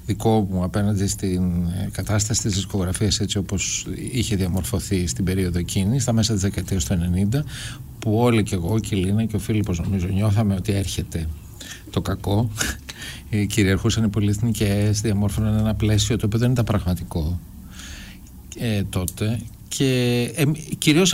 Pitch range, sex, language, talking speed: 95-125 Hz, male, Greek, 150 wpm